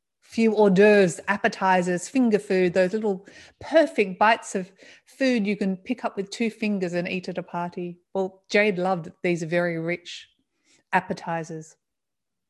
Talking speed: 150 wpm